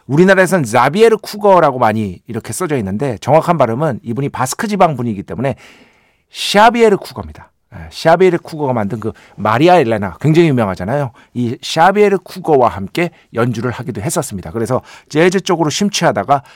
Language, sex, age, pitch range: Korean, male, 50-69, 115-170 Hz